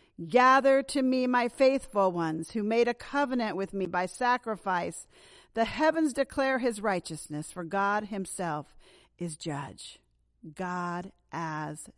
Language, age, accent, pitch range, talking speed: English, 50-69, American, 220-275 Hz, 130 wpm